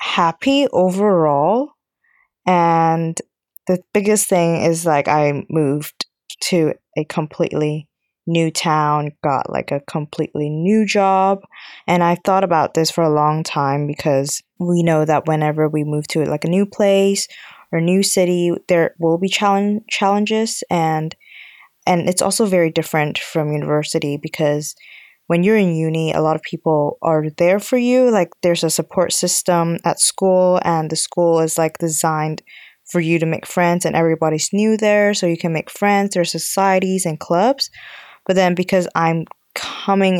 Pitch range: 155-185 Hz